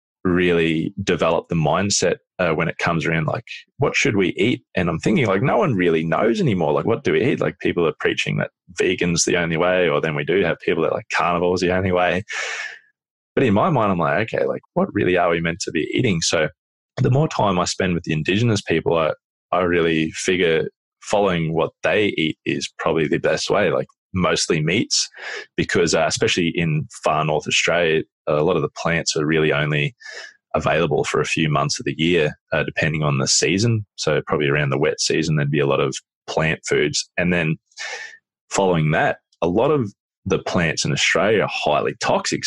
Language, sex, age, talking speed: English, male, 20-39, 210 wpm